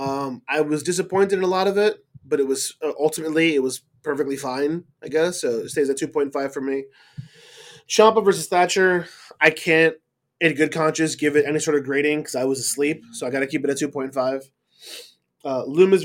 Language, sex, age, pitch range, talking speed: English, male, 20-39, 140-195 Hz, 200 wpm